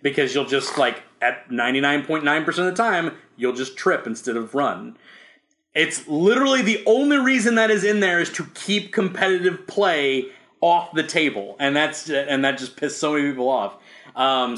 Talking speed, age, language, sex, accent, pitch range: 175 wpm, 30-49, English, male, American, 120-170 Hz